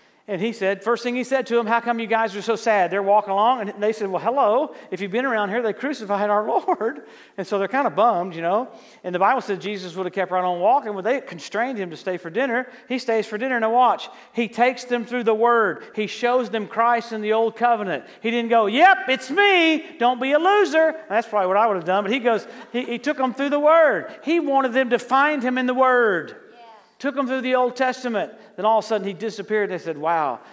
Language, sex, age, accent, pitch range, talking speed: English, male, 40-59, American, 195-255 Hz, 260 wpm